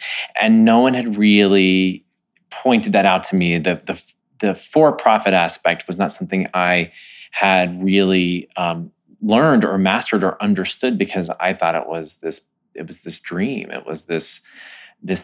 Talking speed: 165 wpm